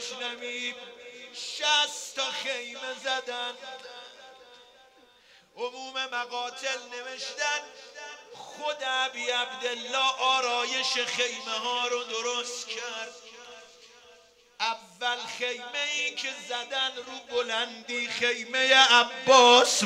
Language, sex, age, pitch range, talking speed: Persian, male, 50-69, 240-265 Hz, 75 wpm